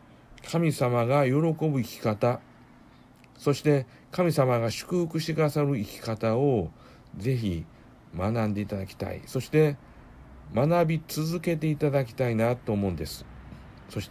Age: 60-79